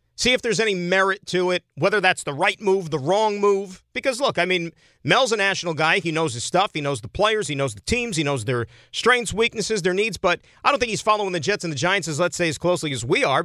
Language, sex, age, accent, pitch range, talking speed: English, male, 40-59, American, 130-215 Hz, 270 wpm